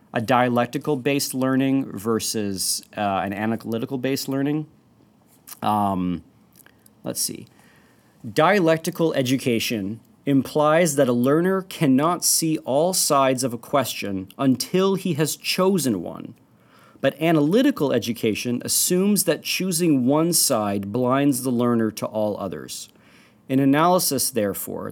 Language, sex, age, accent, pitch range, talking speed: English, male, 40-59, American, 115-145 Hz, 110 wpm